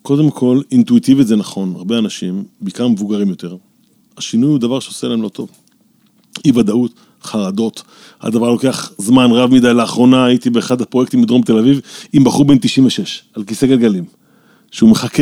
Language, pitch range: Hebrew, 120-200 Hz